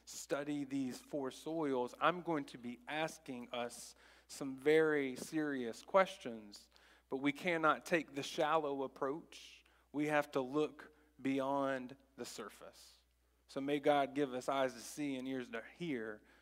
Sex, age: male, 40-59